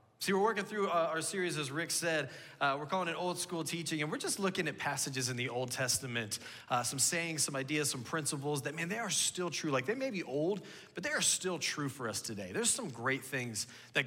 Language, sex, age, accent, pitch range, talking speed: English, male, 30-49, American, 130-165 Hz, 245 wpm